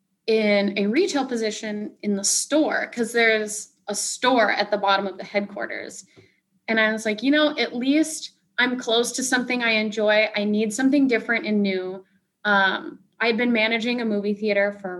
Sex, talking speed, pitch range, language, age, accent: female, 190 wpm, 205-260 Hz, English, 20-39, American